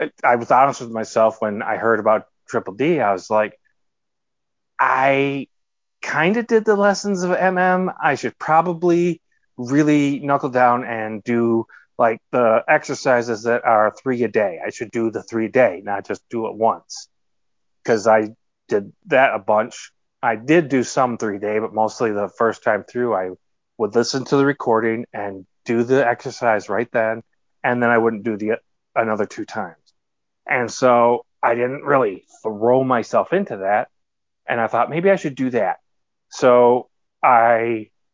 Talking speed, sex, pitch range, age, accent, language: 170 wpm, male, 110-135 Hz, 30-49, American, English